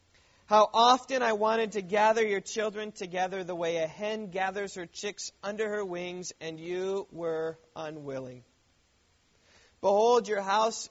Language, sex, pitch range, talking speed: English, male, 155-210 Hz, 145 wpm